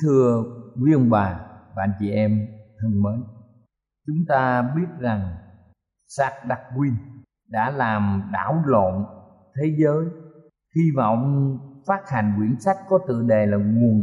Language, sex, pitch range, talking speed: Vietnamese, male, 115-160 Hz, 140 wpm